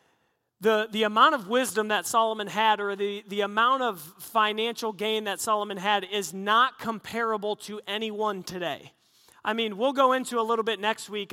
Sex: male